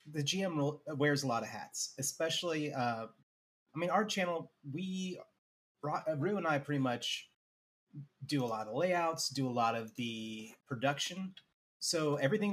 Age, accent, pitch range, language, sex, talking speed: 30-49, American, 125-160 Hz, English, male, 155 wpm